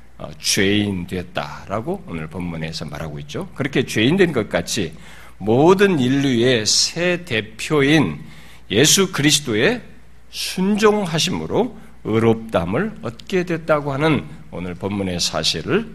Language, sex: Korean, male